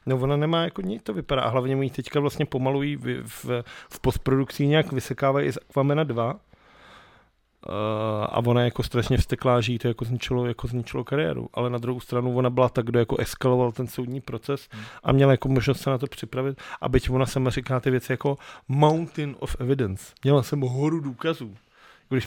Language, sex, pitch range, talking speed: Czech, male, 120-145 Hz, 190 wpm